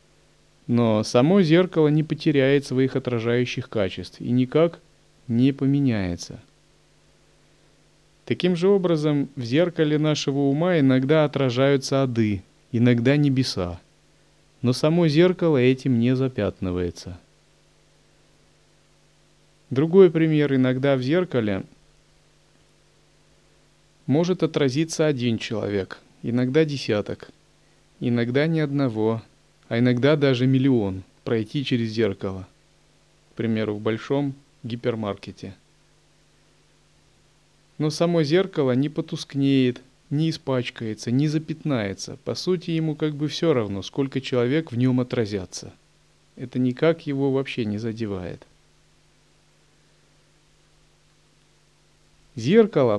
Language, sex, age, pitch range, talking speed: Russian, male, 30-49, 120-155 Hz, 95 wpm